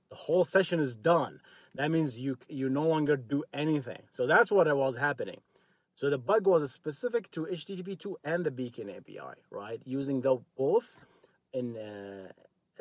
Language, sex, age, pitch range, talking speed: English, male, 30-49, 120-170 Hz, 170 wpm